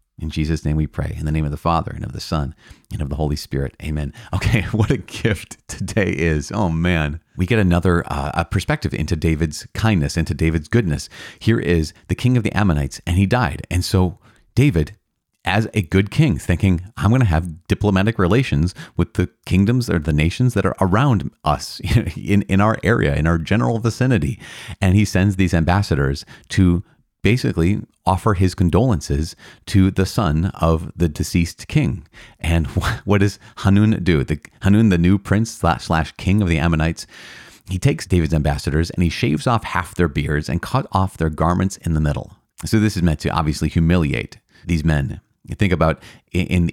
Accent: American